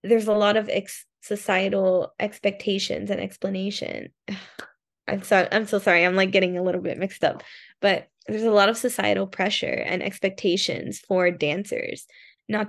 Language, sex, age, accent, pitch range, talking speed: English, female, 10-29, American, 185-210 Hz, 150 wpm